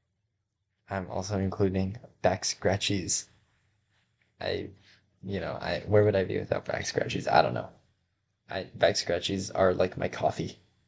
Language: English